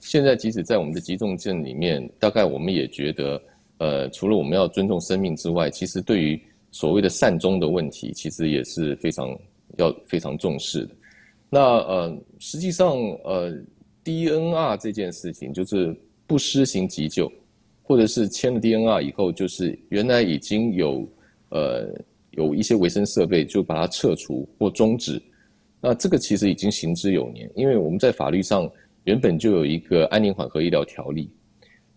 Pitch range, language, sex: 90-130 Hz, Chinese, male